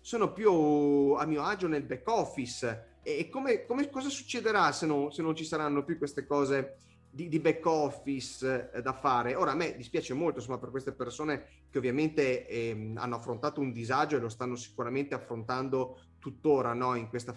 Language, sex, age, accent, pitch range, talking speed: Italian, male, 30-49, native, 120-145 Hz, 185 wpm